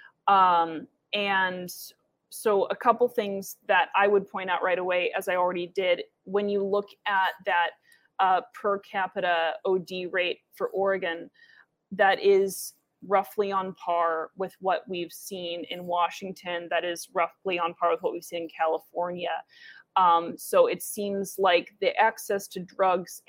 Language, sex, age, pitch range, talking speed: English, female, 20-39, 185-220 Hz, 155 wpm